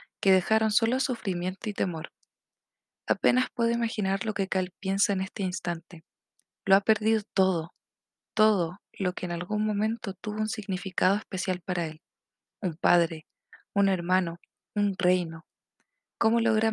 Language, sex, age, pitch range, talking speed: Spanish, female, 20-39, 180-210 Hz, 145 wpm